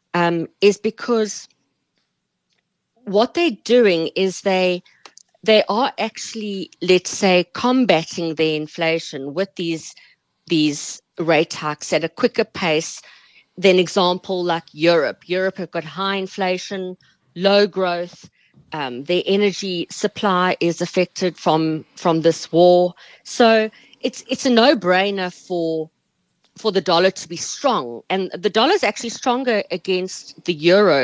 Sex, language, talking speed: female, English, 130 wpm